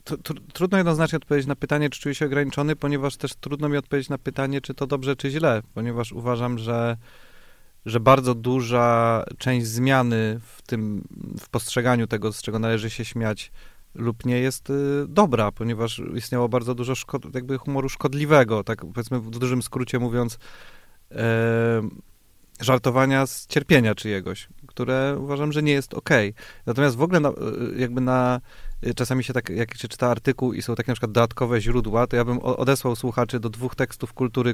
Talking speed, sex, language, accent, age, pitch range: 170 wpm, male, Polish, native, 30-49, 115-140 Hz